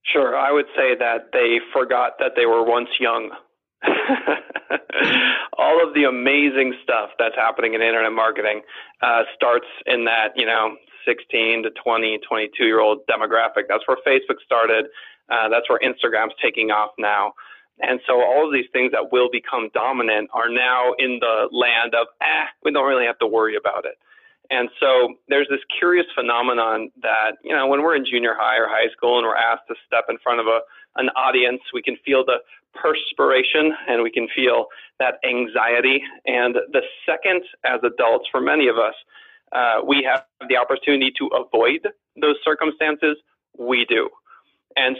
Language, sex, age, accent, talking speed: English, male, 40-59, American, 175 wpm